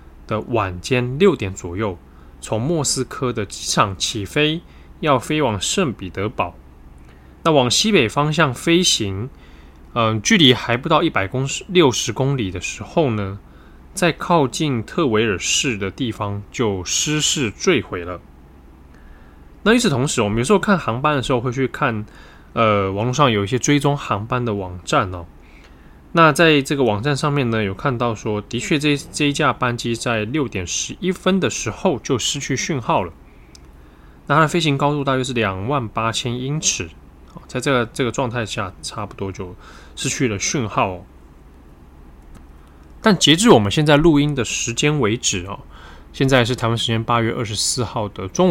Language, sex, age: Chinese, male, 20-39